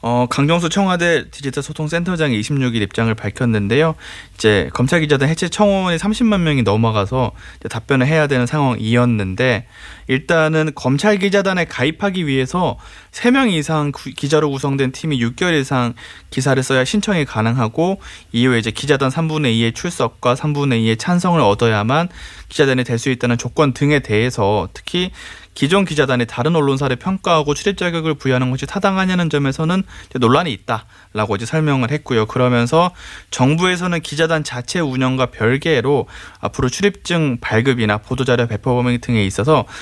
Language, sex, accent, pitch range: Korean, male, native, 120-160 Hz